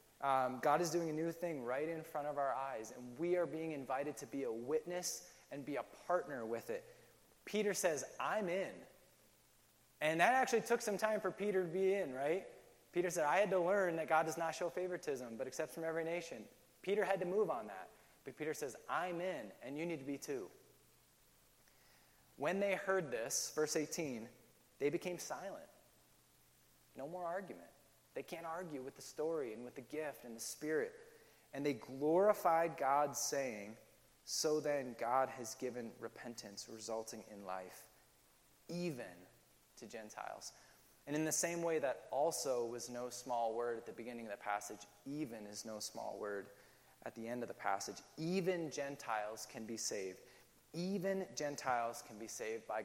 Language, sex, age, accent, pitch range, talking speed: English, male, 20-39, American, 115-175 Hz, 180 wpm